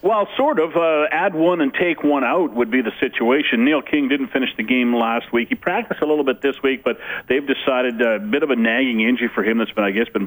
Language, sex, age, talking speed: English, male, 40-59, 270 wpm